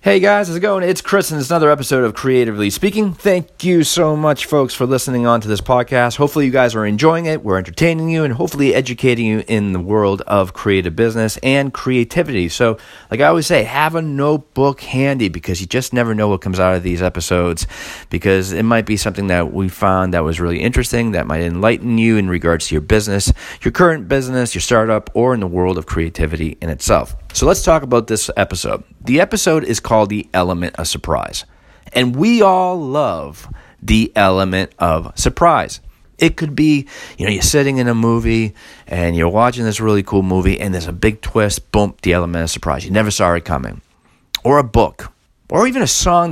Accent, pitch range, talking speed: American, 95-135 Hz, 210 wpm